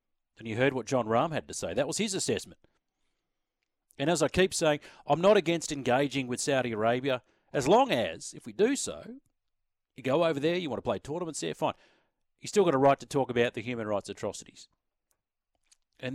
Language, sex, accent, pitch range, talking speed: English, male, Australian, 125-165 Hz, 210 wpm